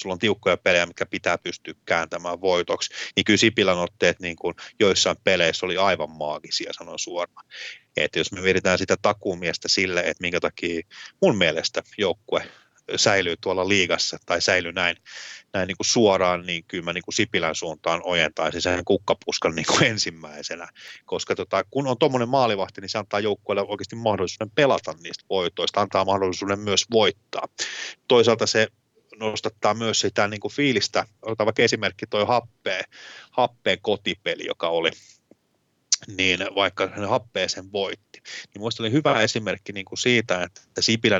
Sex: male